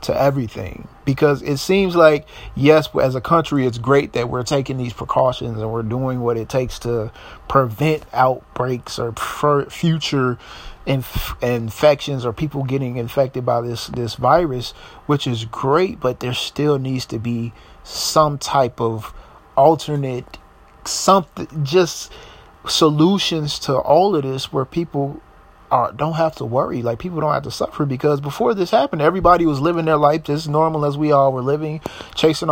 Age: 30-49